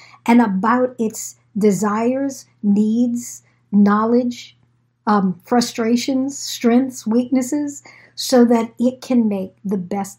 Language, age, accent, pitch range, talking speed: English, 60-79, American, 175-245 Hz, 100 wpm